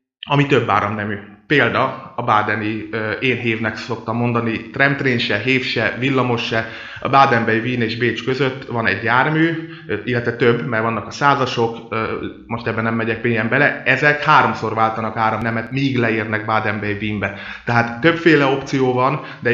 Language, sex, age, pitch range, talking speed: Hungarian, male, 30-49, 115-130 Hz, 145 wpm